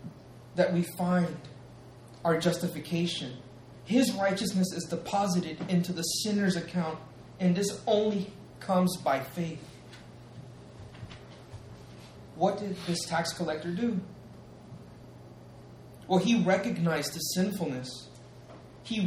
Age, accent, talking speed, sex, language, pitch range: 30-49, American, 100 wpm, male, English, 145-190 Hz